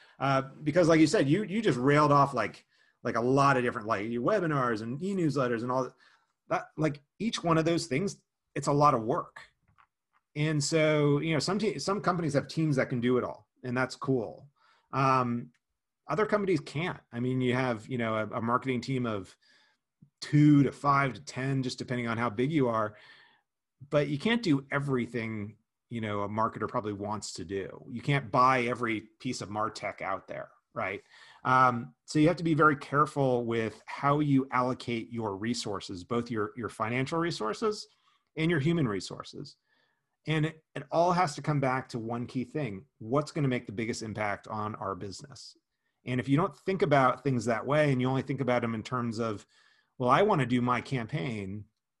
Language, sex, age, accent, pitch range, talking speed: English, male, 30-49, American, 120-150 Hz, 200 wpm